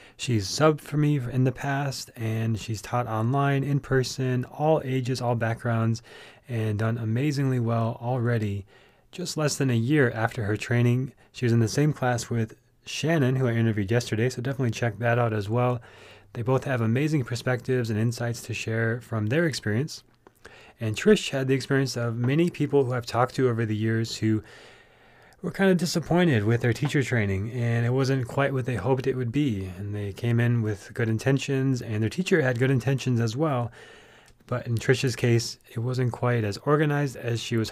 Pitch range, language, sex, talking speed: 110-130 Hz, English, male, 195 wpm